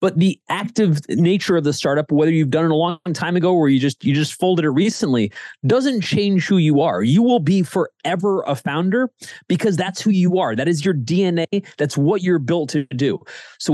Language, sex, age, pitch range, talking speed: English, male, 30-49, 125-175 Hz, 220 wpm